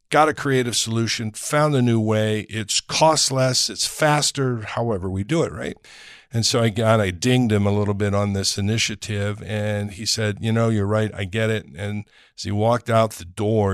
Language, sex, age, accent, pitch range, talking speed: English, male, 50-69, American, 105-130 Hz, 210 wpm